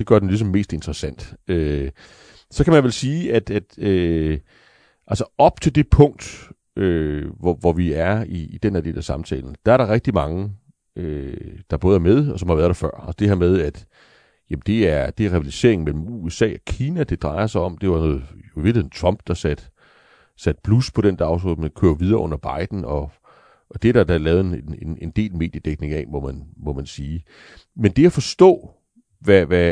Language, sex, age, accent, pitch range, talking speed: Danish, male, 40-59, native, 80-110 Hz, 220 wpm